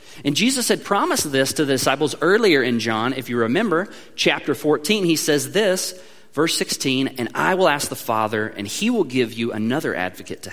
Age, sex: 30-49, male